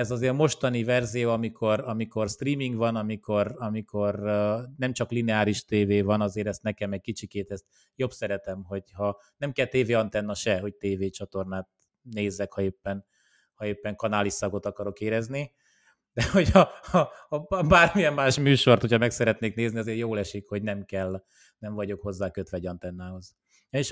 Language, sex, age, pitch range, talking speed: Hungarian, male, 30-49, 100-115 Hz, 160 wpm